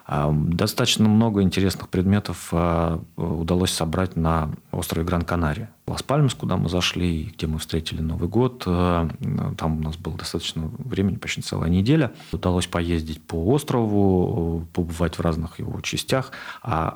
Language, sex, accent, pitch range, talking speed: Russian, male, native, 85-100 Hz, 130 wpm